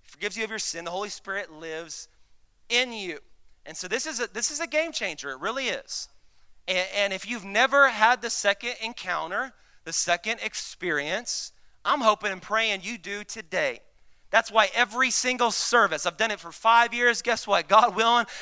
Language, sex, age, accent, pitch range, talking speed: English, male, 30-49, American, 195-245 Hz, 190 wpm